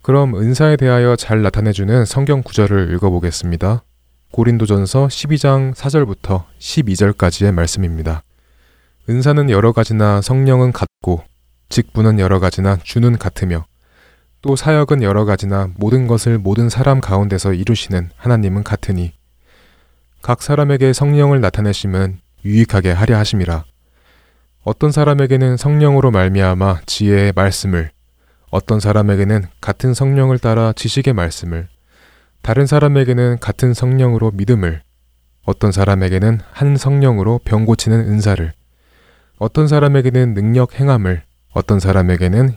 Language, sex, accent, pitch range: Korean, male, native, 90-125 Hz